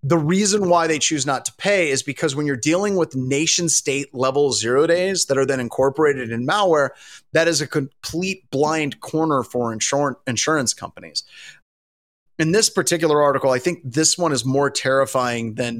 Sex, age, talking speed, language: male, 30-49, 180 wpm, English